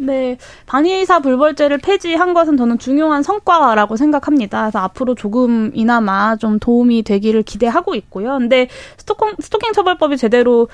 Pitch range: 215-295 Hz